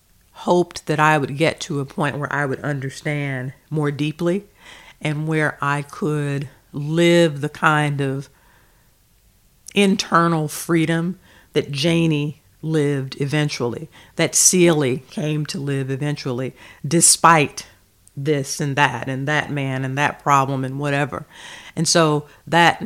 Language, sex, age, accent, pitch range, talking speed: English, female, 50-69, American, 135-160 Hz, 130 wpm